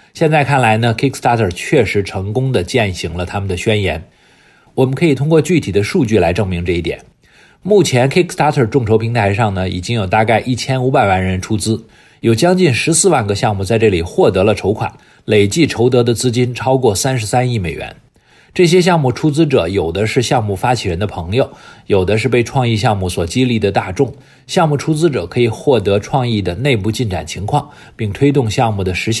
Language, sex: English, male